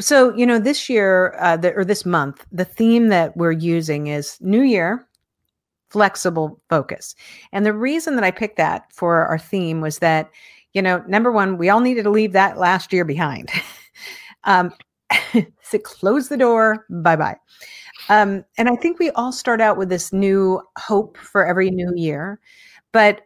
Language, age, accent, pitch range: English, 50-69, American, 175-215 Hz